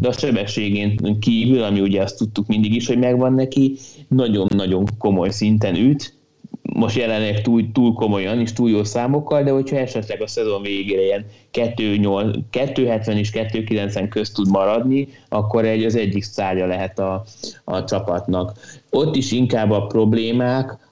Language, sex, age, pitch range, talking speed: Hungarian, male, 20-39, 105-125 Hz, 155 wpm